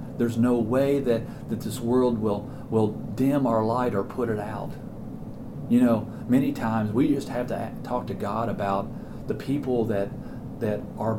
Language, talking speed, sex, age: English, 180 wpm, male, 40-59